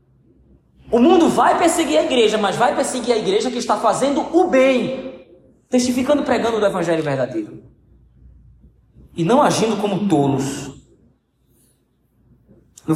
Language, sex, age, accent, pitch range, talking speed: Portuguese, male, 20-39, Brazilian, 165-255 Hz, 125 wpm